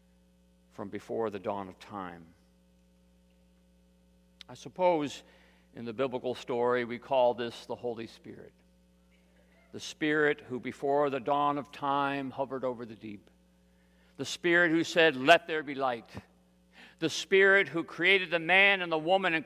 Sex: male